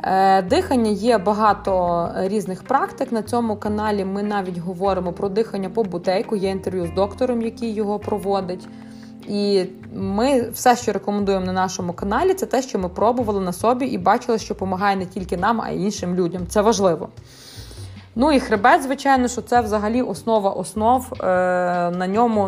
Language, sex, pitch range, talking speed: Ukrainian, female, 180-230 Hz, 165 wpm